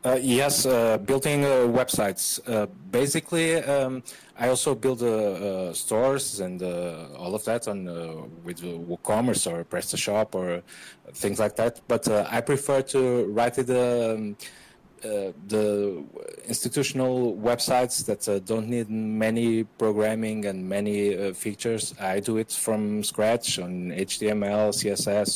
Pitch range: 95-115 Hz